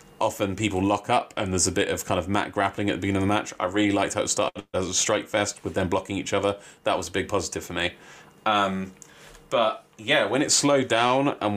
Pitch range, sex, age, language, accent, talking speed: 95-105 Hz, male, 30-49, English, British, 255 wpm